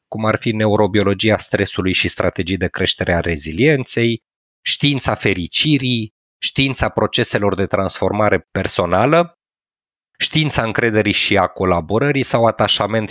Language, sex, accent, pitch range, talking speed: Romanian, male, native, 95-120 Hz, 115 wpm